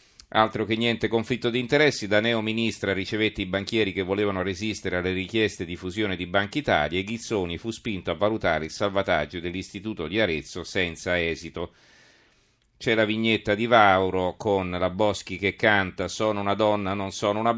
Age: 40-59